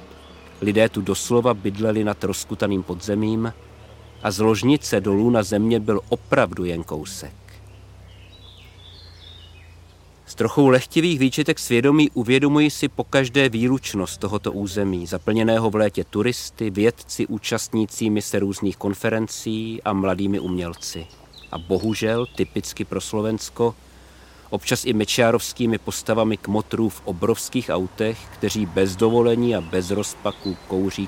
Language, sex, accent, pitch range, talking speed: Czech, male, native, 95-115 Hz, 120 wpm